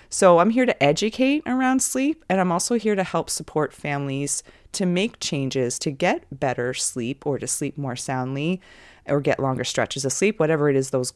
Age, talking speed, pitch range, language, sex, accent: 30-49, 200 wpm, 130-185 Hz, English, female, American